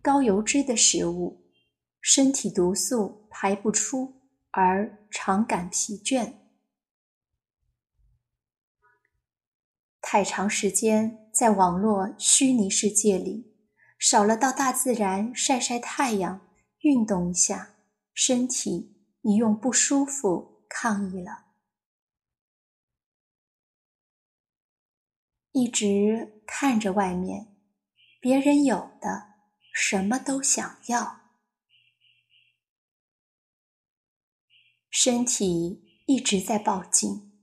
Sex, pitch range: female, 200-270 Hz